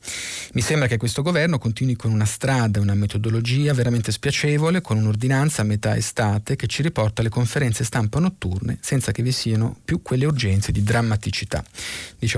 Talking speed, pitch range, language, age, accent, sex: 170 wpm, 110-135 Hz, Italian, 40-59, native, male